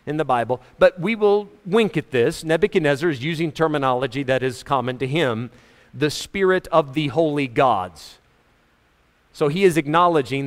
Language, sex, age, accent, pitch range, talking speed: English, male, 40-59, American, 130-165 Hz, 160 wpm